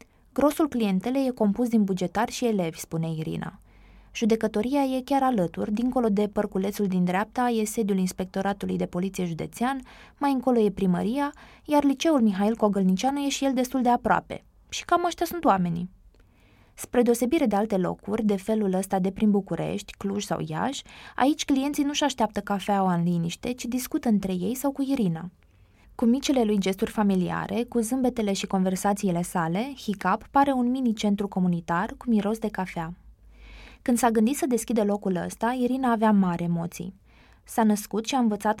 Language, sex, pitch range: Romanian, female, 185-245 Hz